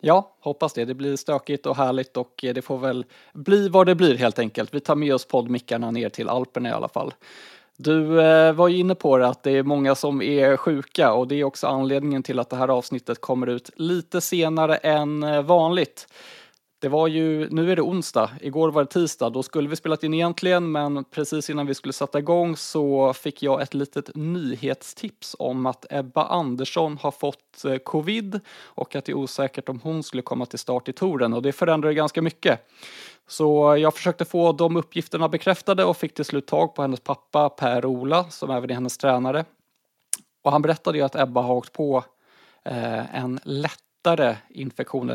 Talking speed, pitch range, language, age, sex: 195 wpm, 130-160 Hz, Swedish, 20-39, male